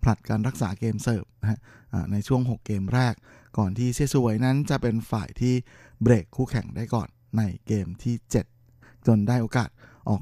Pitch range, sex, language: 110-125 Hz, male, Thai